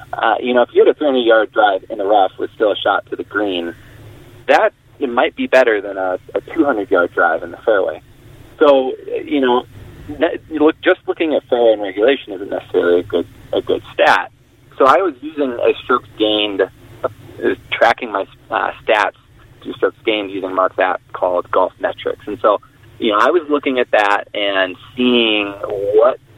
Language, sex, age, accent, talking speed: English, male, 30-49, American, 185 wpm